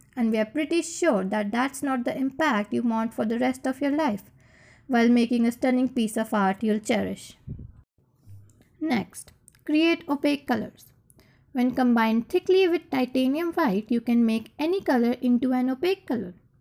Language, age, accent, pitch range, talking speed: English, 20-39, Indian, 225-300 Hz, 165 wpm